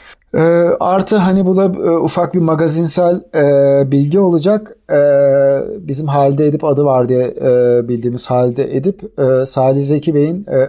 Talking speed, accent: 145 wpm, native